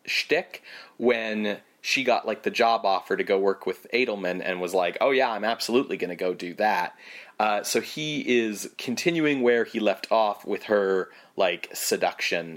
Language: English